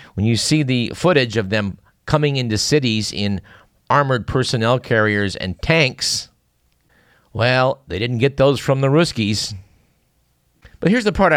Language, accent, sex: English, American, male